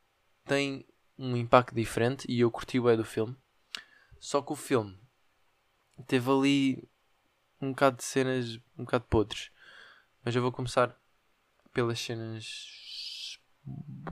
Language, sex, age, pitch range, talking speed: Portuguese, male, 20-39, 110-130 Hz, 130 wpm